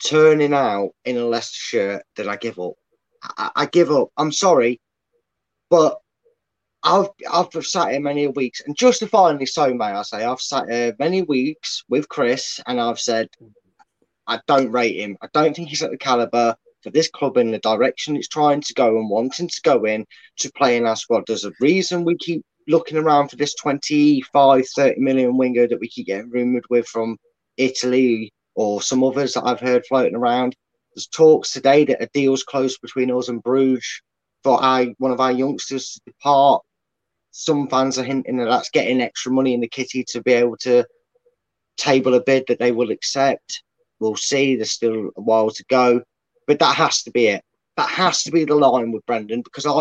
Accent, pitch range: British, 120-150 Hz